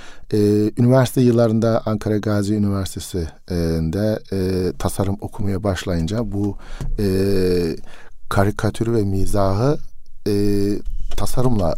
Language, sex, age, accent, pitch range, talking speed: Turkish, male, 50-69, native, 80-110 Hz, 90 wpm